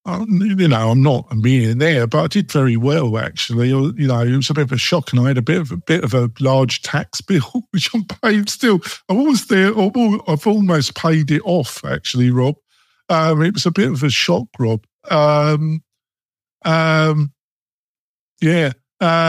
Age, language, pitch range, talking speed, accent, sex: 50-69, English, 125-170 Hz, 195 wpm, British, male